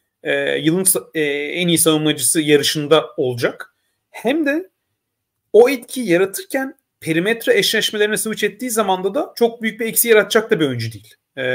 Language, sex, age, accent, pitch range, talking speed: Turkish, male, 40-59, native, 145-230 Hz, 150 wpm